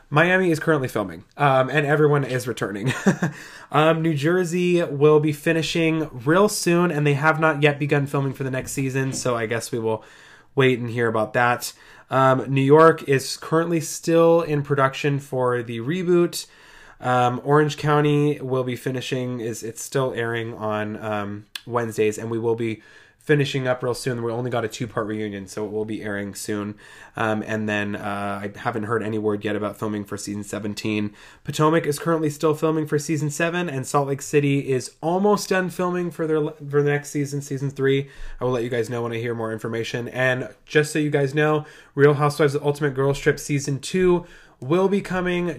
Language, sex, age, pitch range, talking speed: English, male, 20-39, 120-155 Hz, 195 wpm